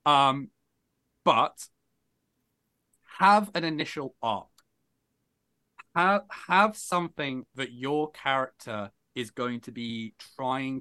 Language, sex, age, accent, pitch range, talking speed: English, male, 30-49, British, 115-150 Hz, 95 wpm